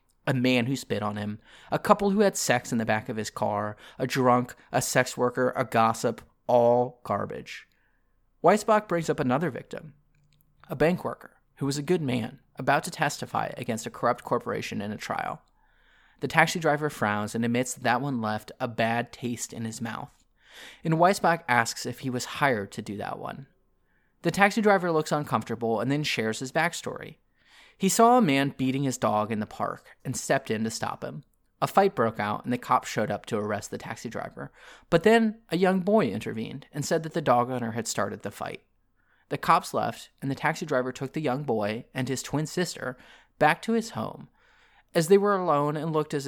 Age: 30-49